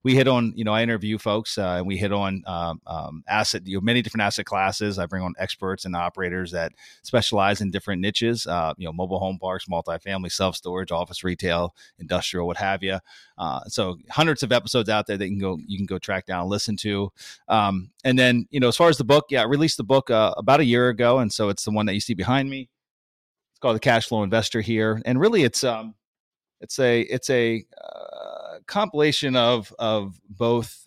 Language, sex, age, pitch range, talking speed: English, male, 30-49, 95-120 Hz, 225 wpm